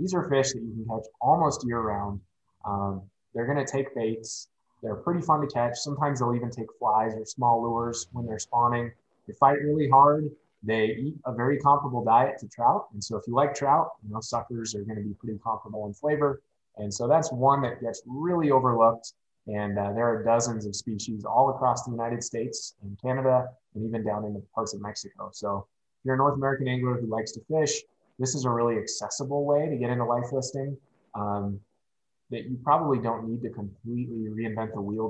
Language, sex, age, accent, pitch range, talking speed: English, male, 20-39, American, 110-135 Hz, 210 wpm